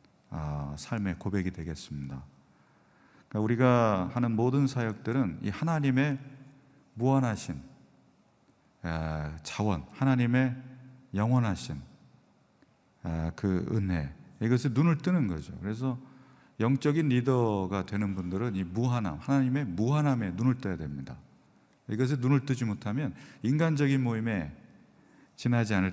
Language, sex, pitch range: Korean, male, 95-130 Hz